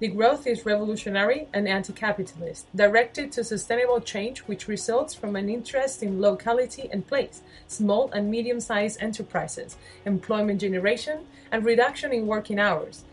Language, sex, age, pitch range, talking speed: English, female, 30-49, 195-245 Hz, 135 wpm